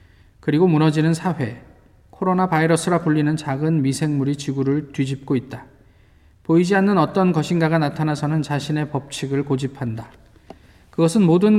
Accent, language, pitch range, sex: native, Korean, 130-170 Hz, male